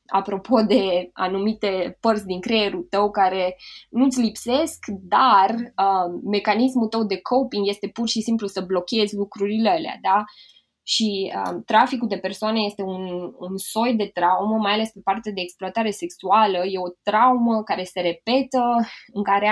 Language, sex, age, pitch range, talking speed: Romanian, female, 20-39, 190-230 Hz, 155 wpm